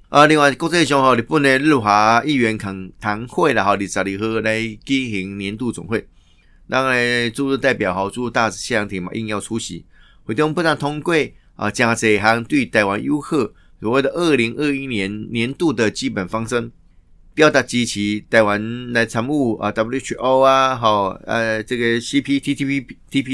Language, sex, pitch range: Chinese, male, 100-130 Hz